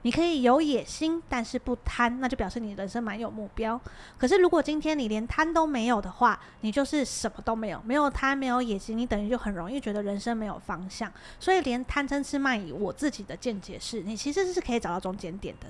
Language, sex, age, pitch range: Chinese, female, 20-39, 205-260 Hz